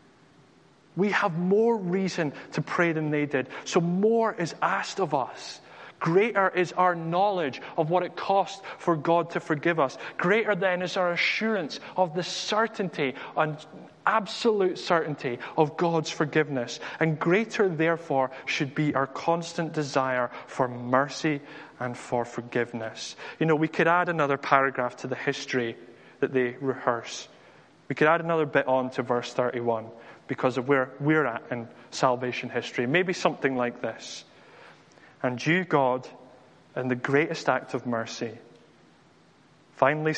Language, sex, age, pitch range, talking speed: English, male, 20-39, 125-170 Hz, 150 wpm